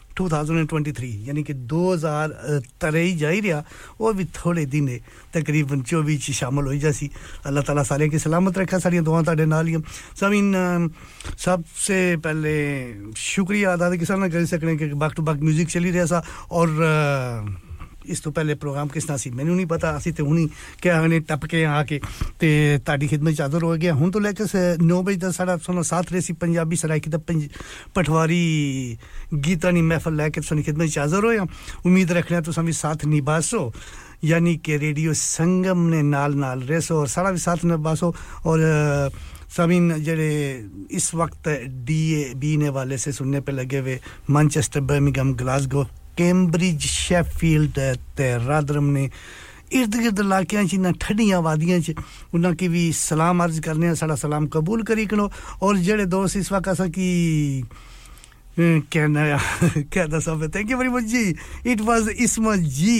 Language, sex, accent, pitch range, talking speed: English, male, Indian, 145-180 Hz, 80 wpm